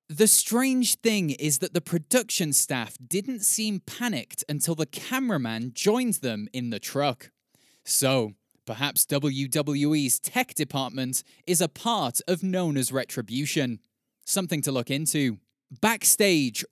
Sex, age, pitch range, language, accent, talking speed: male, 20-39, 130-175 Hz, English, British, 125 wpm